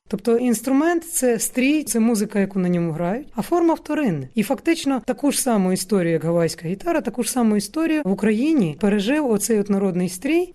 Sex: female